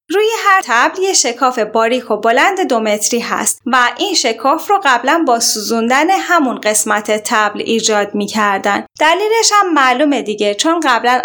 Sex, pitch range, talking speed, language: female, 215-285 Hz, 155 wpm, Persian